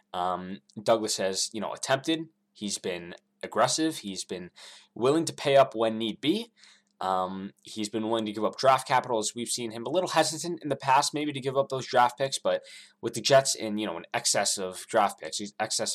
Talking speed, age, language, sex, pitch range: 215 wpm, 20-39, English, male, 105-145 Hz